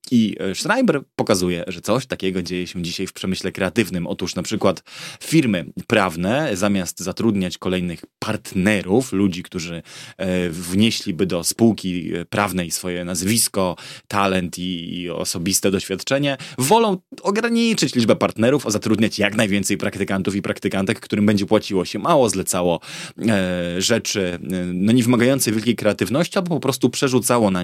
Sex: male